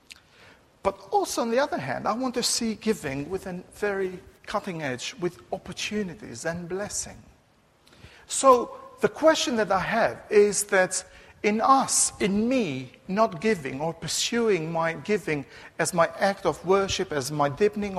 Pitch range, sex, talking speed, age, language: 160-225 Hz, male, 155 wpm, 50-69, English